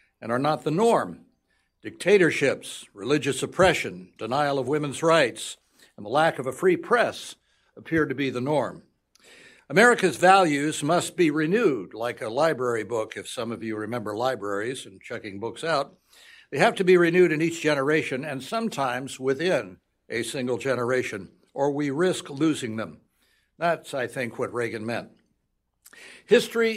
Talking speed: 155 wpm